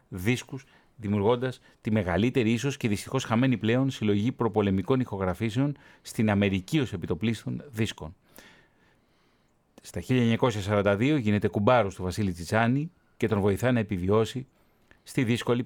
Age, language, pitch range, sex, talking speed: 40-59, Greek, 100-125 Hz, male, 115 wpm